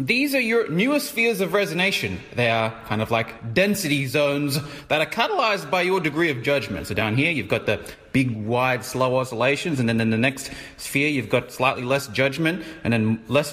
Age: 30-49